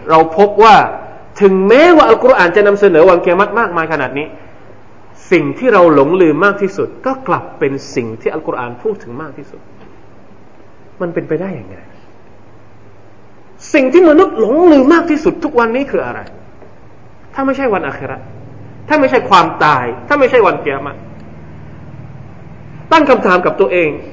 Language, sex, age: Thai, male, 30-49